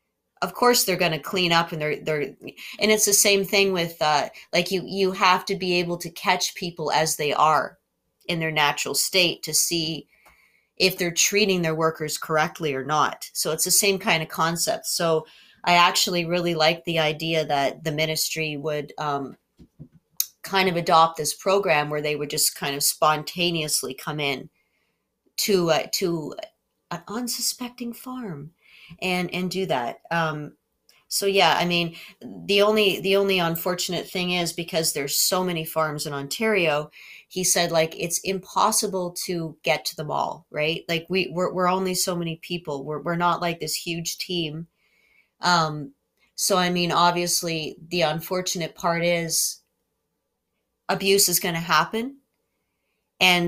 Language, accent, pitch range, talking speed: English, American, 155-185 Hz, 165 wpm